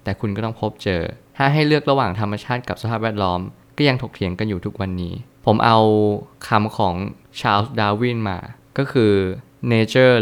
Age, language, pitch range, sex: 20-39, Thai, 105-130 Hz, male